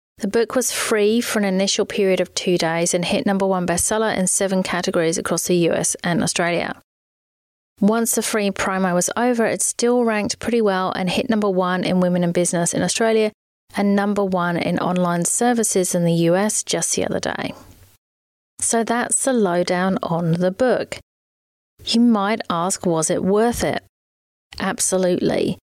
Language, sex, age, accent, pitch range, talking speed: English, female, 30-49, British, 175-215 Hz, 170 wpm